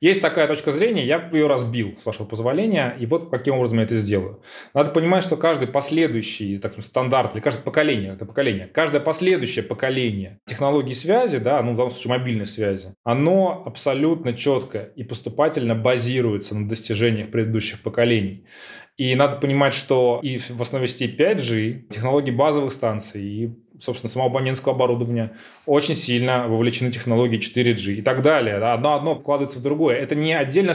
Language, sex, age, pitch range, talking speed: Russian, male, 20-39, 115-150 Hz, 160 wpm